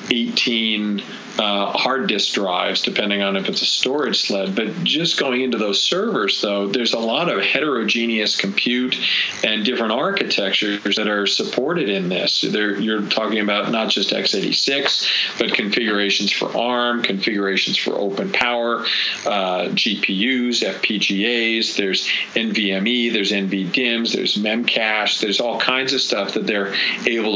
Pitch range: 100-120 Hz